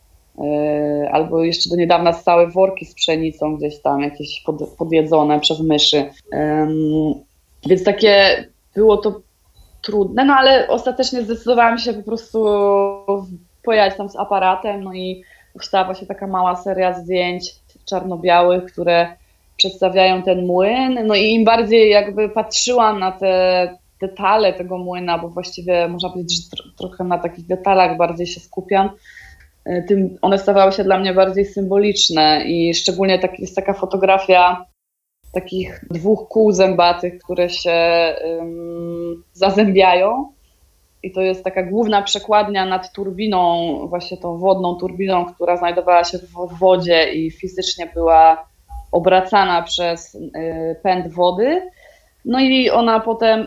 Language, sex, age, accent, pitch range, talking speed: Polish, female, 20-39, native, 170-200 Hz, 135 wpm